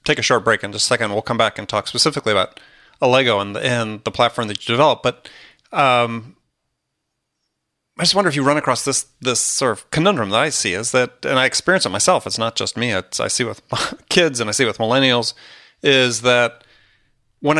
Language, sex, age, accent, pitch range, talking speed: English, male, 30-49, American, 110-130 Hz, 225 wpm